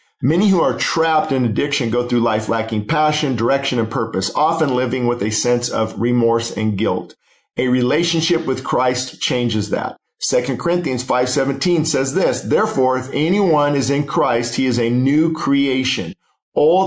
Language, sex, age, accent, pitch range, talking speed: English, male, 50-69, American, 115-140 Hz, 165 wpm